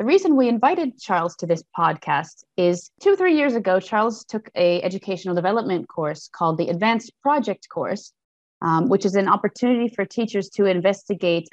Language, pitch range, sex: Swedish, 175-220 Hz, female